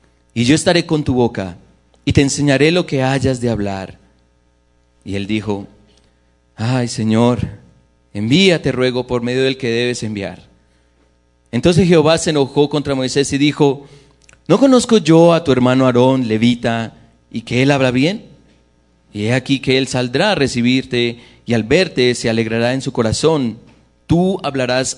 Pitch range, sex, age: 100-140 Hz, male, 30-49